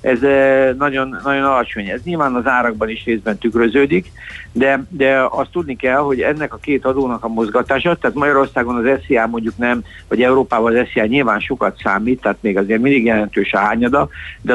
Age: 60-79